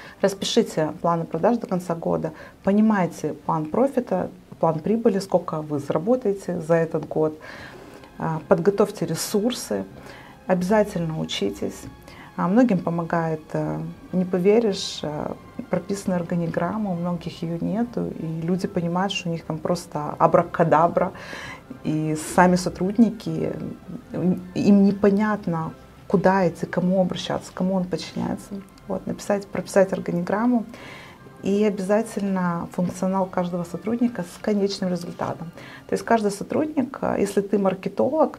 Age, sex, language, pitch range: 30-49, female, Russian, 170-205 Hz